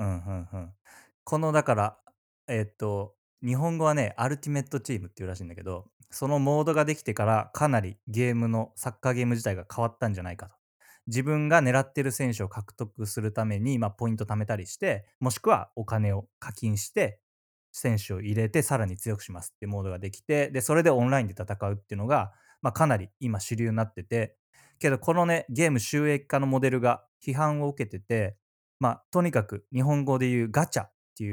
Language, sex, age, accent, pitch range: English, male, 20-39, Japanese, 105-140 Hz